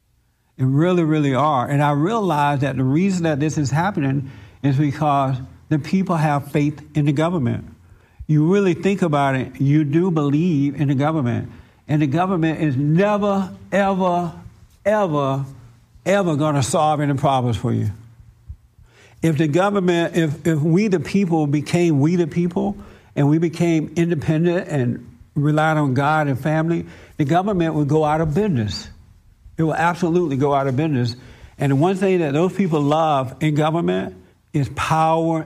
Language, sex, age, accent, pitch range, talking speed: English, male, 60-79, American, 130-165 Hz, 165 wpm